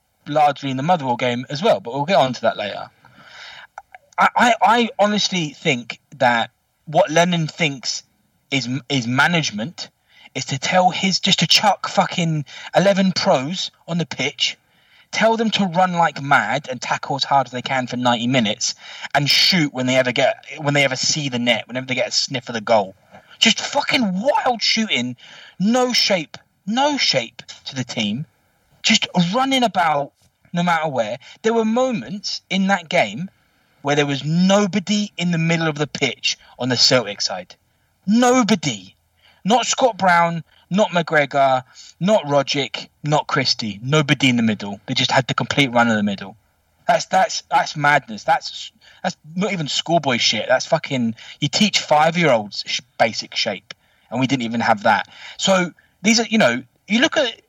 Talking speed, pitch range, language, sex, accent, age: 175 wpm, 130-195 Hz, English, male, British, 20-39